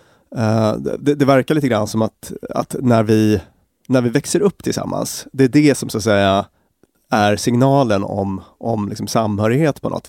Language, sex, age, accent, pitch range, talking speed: English, male, 30-49, Swedish, 105-130 Hz, 180 wpm